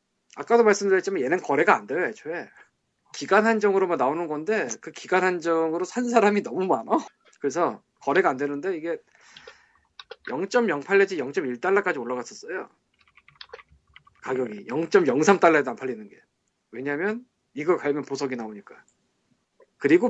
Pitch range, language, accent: 145-225 Hz, Korean, native